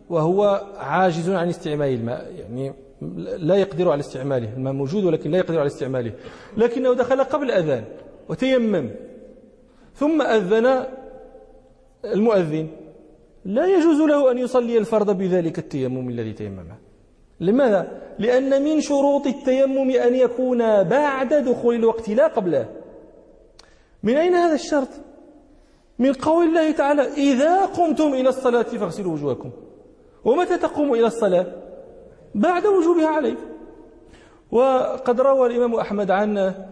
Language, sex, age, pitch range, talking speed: English, male, 40-59, 185-255 Hz, 120 wpm